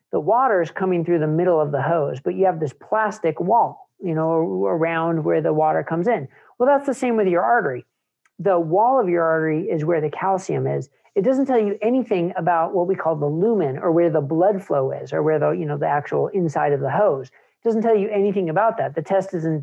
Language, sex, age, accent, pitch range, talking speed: English, male, 50-69, American, 155-195 Hz, 240 wpm